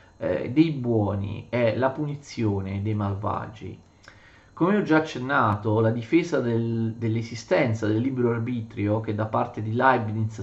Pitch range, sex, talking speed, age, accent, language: 110-155 Hz, male, 125 wpm, 40-59, native, Italian